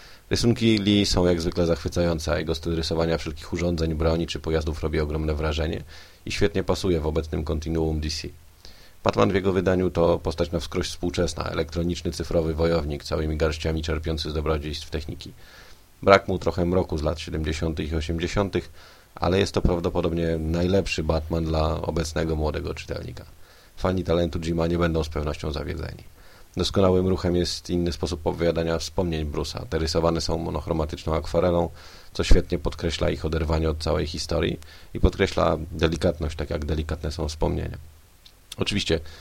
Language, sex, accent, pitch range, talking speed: Polish, male, native, 80-90 Hz, 155 wpm